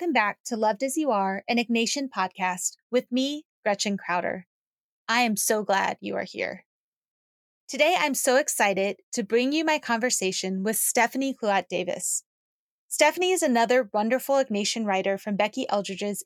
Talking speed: 160 wpm